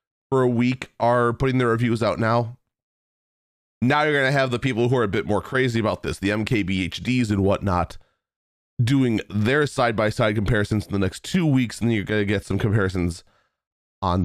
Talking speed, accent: 190 wpm, American